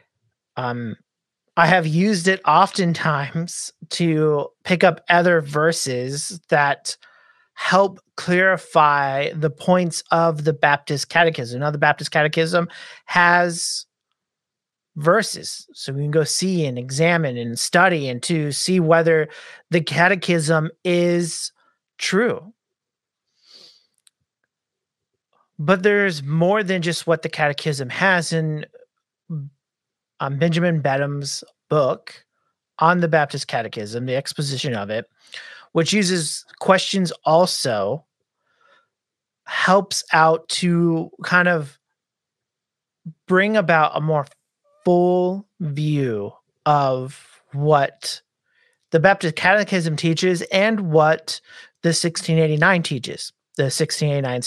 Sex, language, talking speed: male, English, 100 wpm